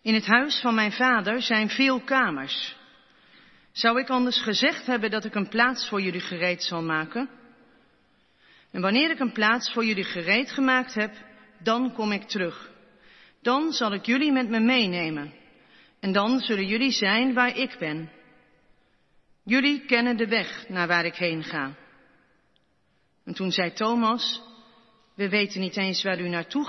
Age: 40-59